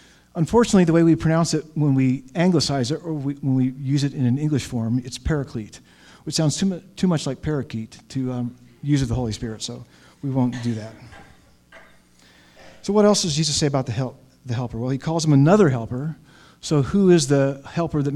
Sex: male